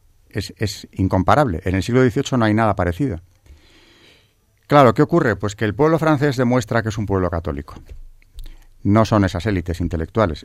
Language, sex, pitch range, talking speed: Spanish, male, 90-115 Hz, 170 wpm